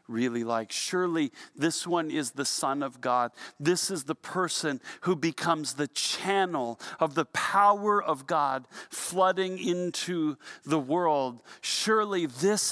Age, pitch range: 40-59, 170-225 Hz